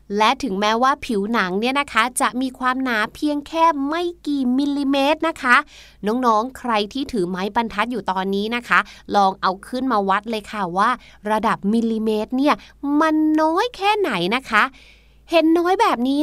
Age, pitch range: 20-39, 210-280 Hz